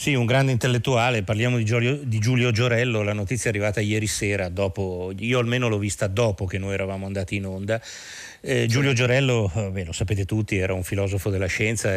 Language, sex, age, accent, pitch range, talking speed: Italian, male, 30-49, native, 100-130 Hz, 200 wpm